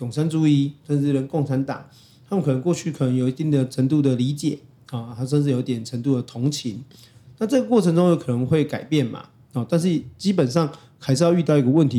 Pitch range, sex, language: 130-160 Hz, male, Chinese